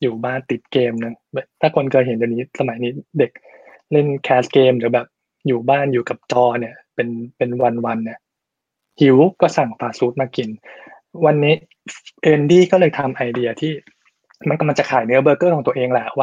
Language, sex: Thai, male